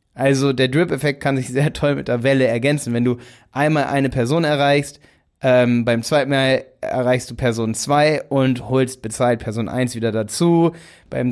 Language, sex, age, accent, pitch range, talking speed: German, male, 30-49, German, 120-150 Hz, 175 wpm